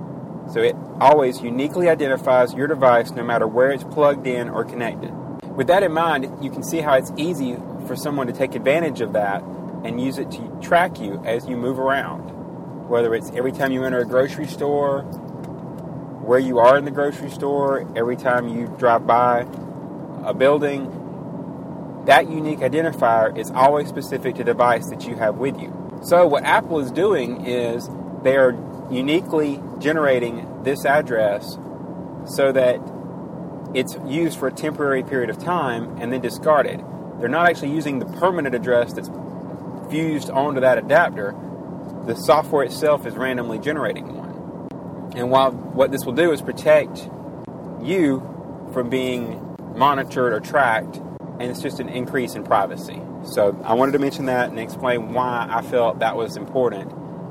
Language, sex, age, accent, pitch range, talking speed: English, male, 30-49, American, 120-145 Hz, 165 wpm